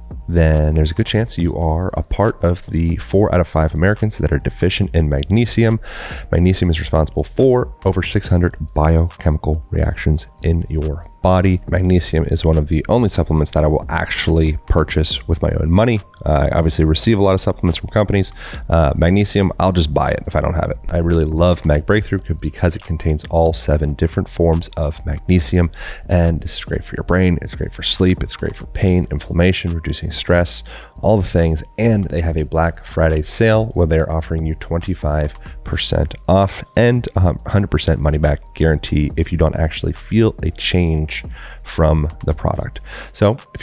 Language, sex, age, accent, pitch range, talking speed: English, male, 30-49, American, 80-95 Hz, 185 wpm